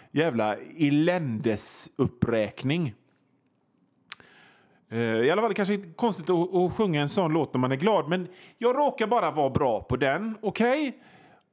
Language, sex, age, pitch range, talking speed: Swedish, male, 30-49, 125-195 Hz, 165 wpm